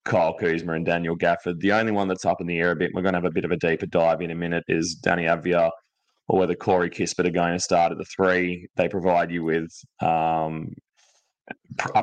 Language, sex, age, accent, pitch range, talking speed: English, male, 20-39, Australian, 85-95 Hz, 240 wpm